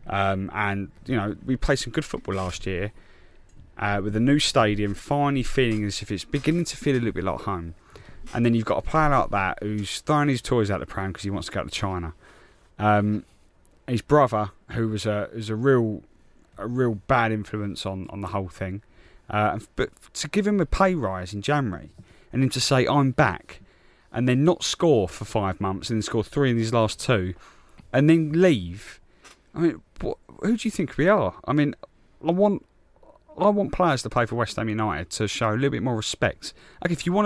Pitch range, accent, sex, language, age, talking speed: 100-140 Hz, British, male, English, 20-39, 215 wpm